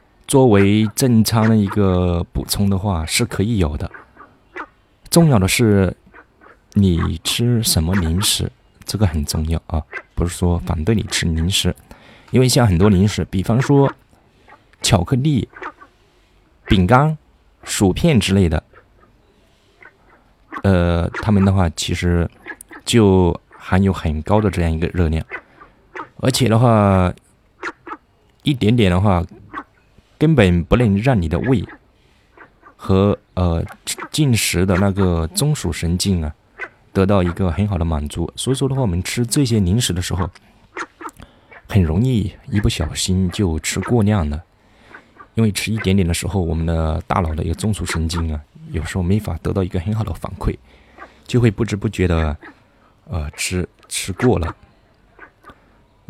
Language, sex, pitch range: Chinese, male, 85-110 Hz